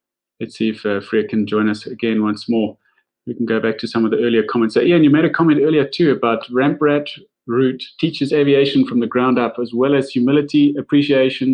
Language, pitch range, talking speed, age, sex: English, 115-140 Hz, 230 wpm, 30-49, male